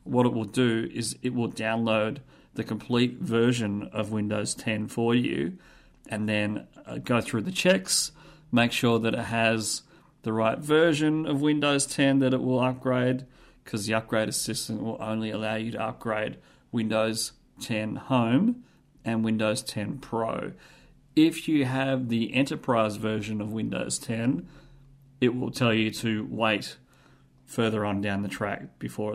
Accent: Australian